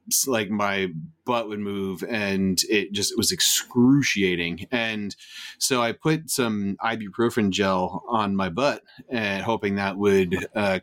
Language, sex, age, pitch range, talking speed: English, male, 30-49, 100-115 Hz, 140 wpm